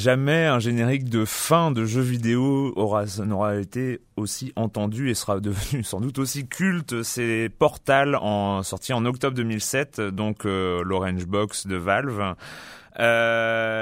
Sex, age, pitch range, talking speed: male, 30-49, 105-135 Hz, 150 wpm